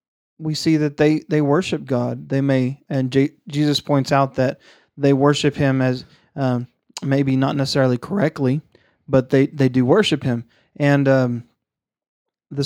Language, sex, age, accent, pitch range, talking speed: English, male, 30-49, American, 130-155 Hz, 155 wpm